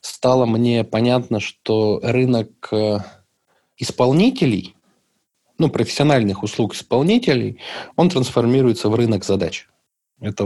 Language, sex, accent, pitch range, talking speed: Russian, male, native, 100-125 Hz, 90 wpm